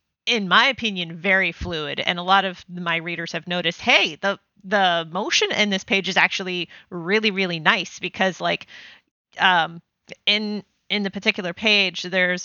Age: 30-49